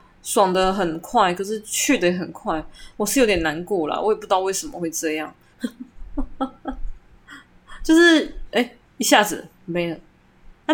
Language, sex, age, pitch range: Chinese, female, 20-39, 170-220 Hz